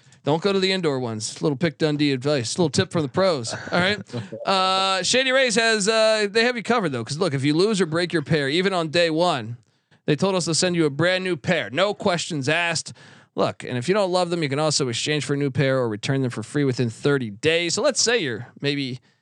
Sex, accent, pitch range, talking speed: male, American, 135-185 Hz, 255 wpm